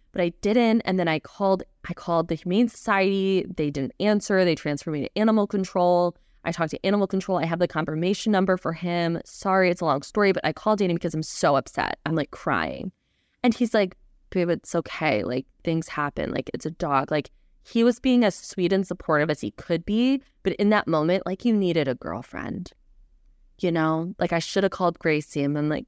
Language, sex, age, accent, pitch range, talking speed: English, female, 20-39, American, 160-210 Hz, 220 wpm